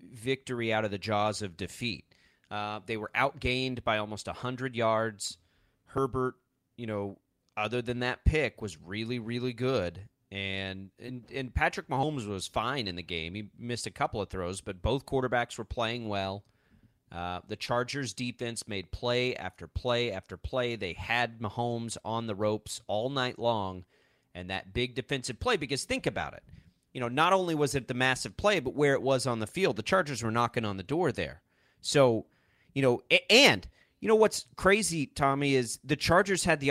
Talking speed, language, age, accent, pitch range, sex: 190 wpm, English, 30-49, American, 105-135 Hz, male